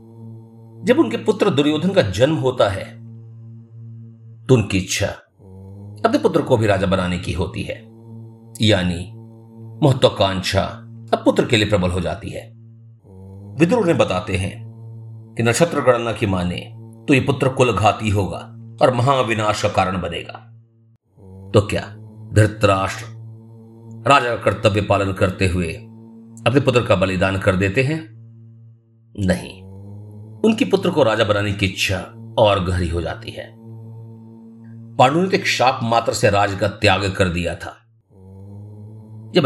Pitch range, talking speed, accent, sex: 100-115 Hz, 135 wpm, native, male